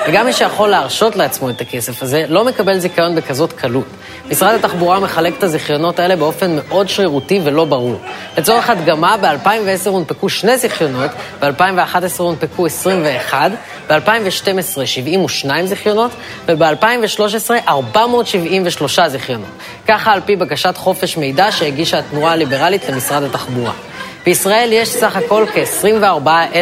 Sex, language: female, Hebrew